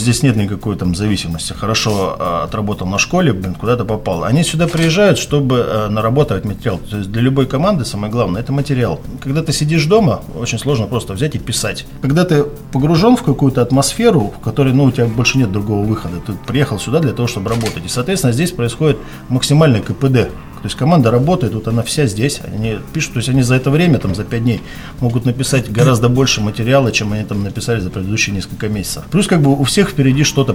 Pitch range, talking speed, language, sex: 105-140 Hz, 200 wpm, Russian, male